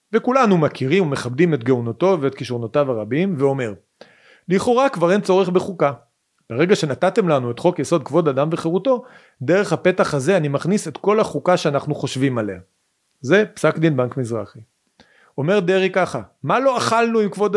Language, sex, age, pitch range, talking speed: Hebrew, male, 40-59, 135-190 Hz, 160 wpm